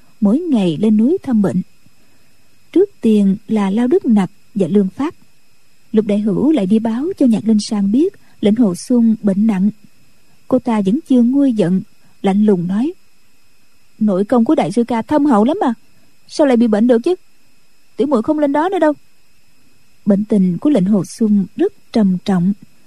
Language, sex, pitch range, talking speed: Vietnamese, female, 200-255 Hz, 190 wpm